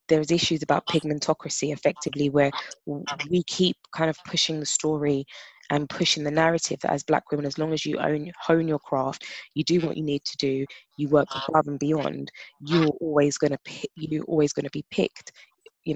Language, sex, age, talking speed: English, female, 20-39, 190 wpm